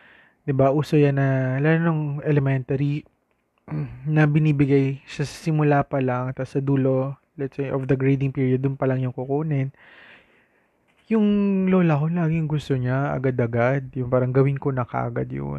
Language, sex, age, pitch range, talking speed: Filipino, male, 20-39, 125-150 Hz, 160 wpm